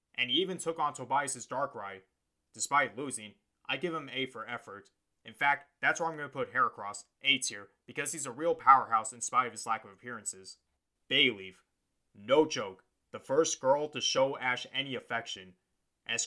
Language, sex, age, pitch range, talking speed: English, male, 20-39, 105-135 Hz, 190 wpm